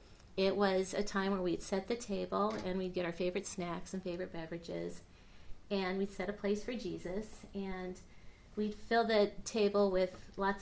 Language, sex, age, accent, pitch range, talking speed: English, female, 30-49, American, 165-205 Hz, 180 wpm